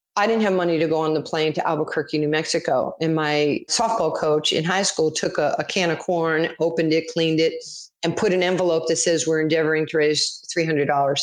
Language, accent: English, American